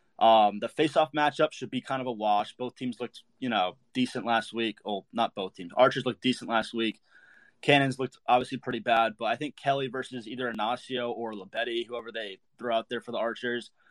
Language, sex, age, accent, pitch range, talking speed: English, male, 20-39, American, 115-135 Hz, 215 wpm